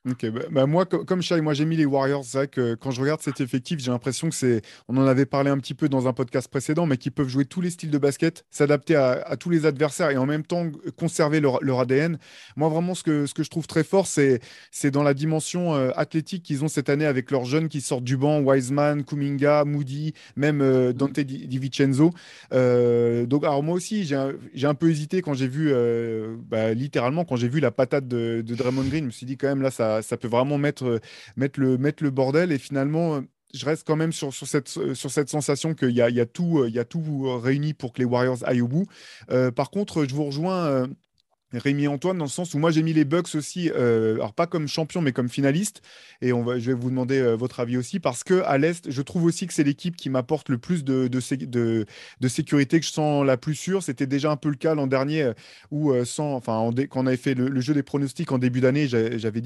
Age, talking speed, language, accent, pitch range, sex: 20-39, 260 wpm, French, French, 130-155 Hz, male